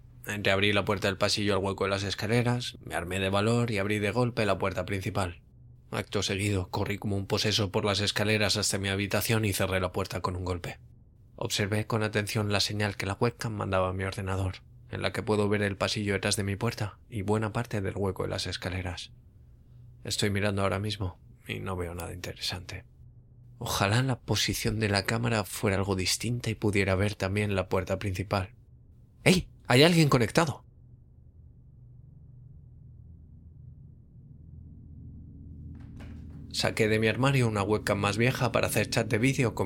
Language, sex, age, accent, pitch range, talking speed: Spanish, male, 20-39, Spanish, 95-115 Hz, 170 wpm